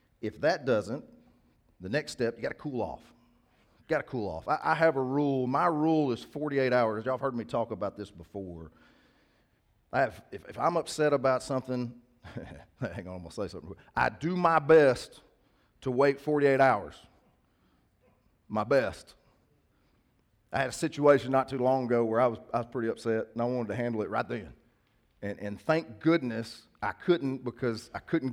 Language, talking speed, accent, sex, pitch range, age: English, 190 wpm, American, male, 105-135 Hz, 40-59